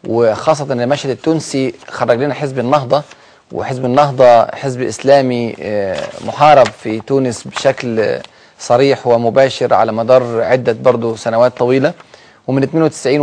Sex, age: male, 30-49